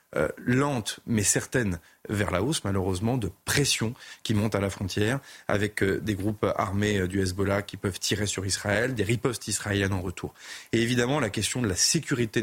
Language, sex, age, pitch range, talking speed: French, male, 30-49, 100-130 Hz, 195 wpm